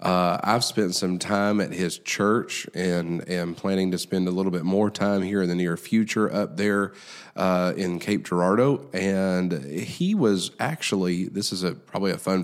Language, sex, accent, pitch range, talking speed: English, male, American, 90-105 Hz, 190 wpm